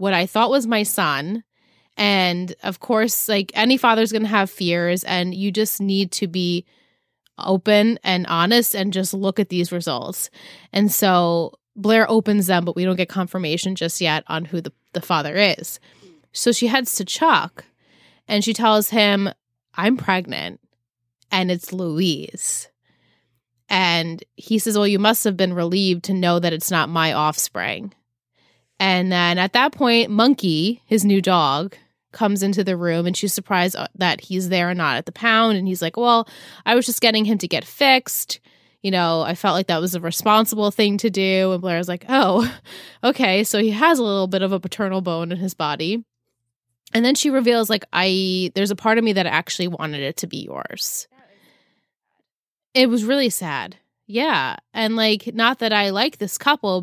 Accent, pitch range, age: American, 175-220 Hz, 20-39